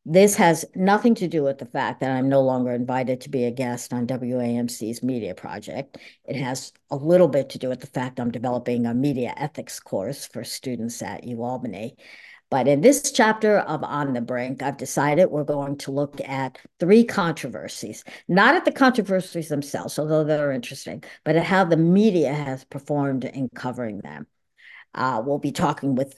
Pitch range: 125-155 Hz